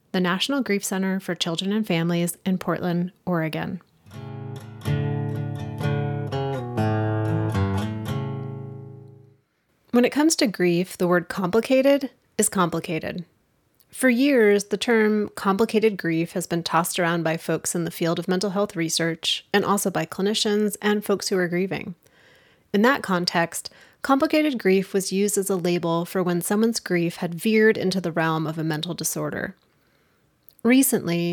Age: 30-49